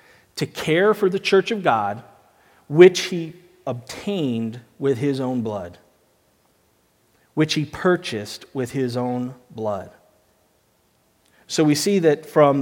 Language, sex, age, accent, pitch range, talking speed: English, male, 40-59, American, 125-165 Hz, 125 wpm